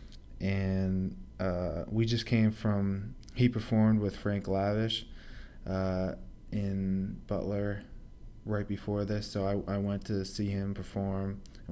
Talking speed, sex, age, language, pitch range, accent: 135 wpm, male, 20-39, English, 95-105 Hz, American